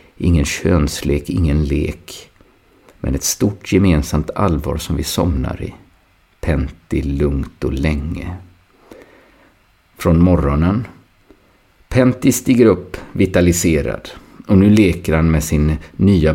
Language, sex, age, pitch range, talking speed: Swedish, male, 50-69, 80-95 Hz, 110 wpm